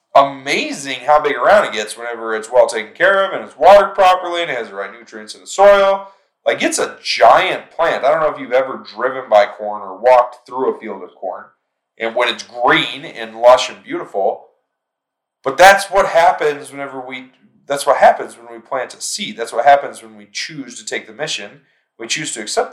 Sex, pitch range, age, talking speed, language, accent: male, 115-175 Hz, 30-49, 215 wpm, English, American